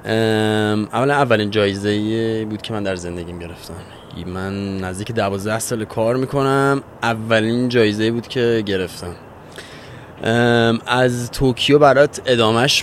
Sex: male